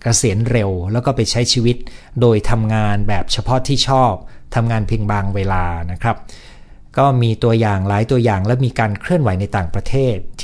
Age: 60-79